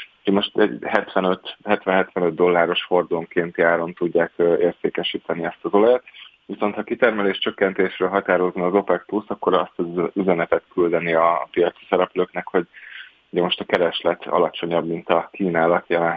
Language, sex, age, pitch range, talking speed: Hungarian, male, 20-39, 85-95 Hz, 135 wpm